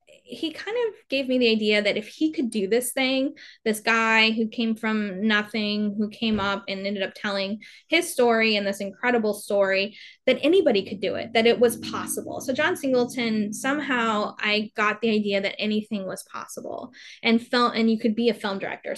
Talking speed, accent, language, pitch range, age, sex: 200 wpm, American, English, 195-230 Hz, 10-29, female